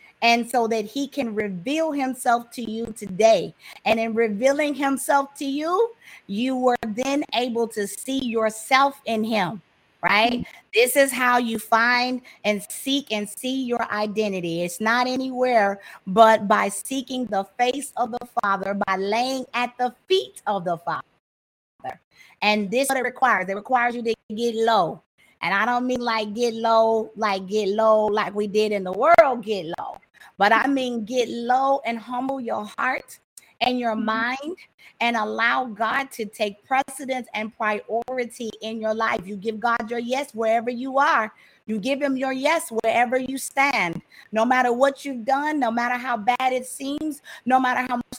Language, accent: English, American